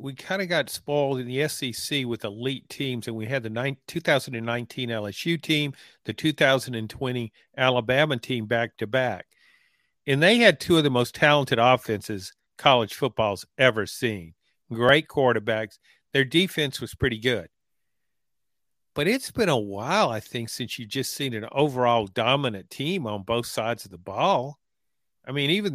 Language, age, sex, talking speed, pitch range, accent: English, 50-69, male, 165 wpm, 120-155 Hz, American